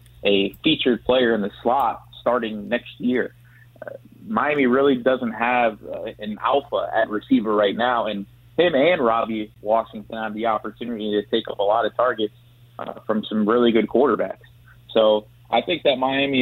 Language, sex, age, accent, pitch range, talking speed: English, male, 30-49, American, 110-125 Hz, 170 wpm